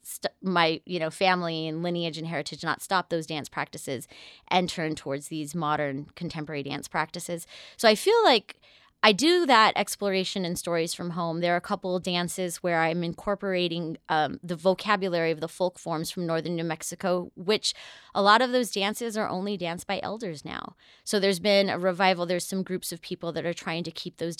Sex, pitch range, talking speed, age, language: female, 165-195 Hz, 200 wpm, 20-39, English